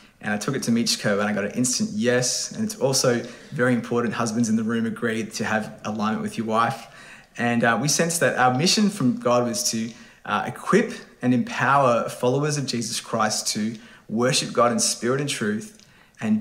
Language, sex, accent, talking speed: English, male, Australian, 200 wpm